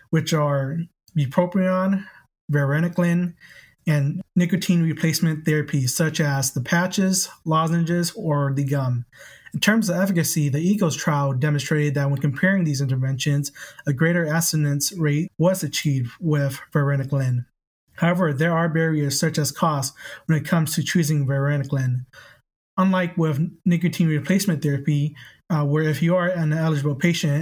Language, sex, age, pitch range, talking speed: English, male, 20-39, 145-170 Hz, 140 wpm